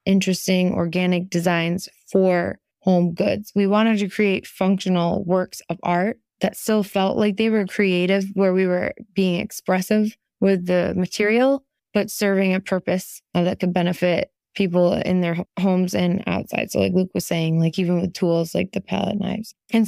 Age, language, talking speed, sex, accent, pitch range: 20-39, English, 170 wpm, female, American, 180-210 Hz